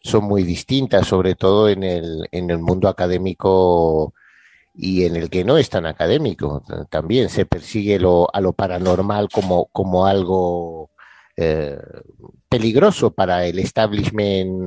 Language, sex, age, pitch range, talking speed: Spanish, male, 50-69, 90-105 Hz, 140 wpm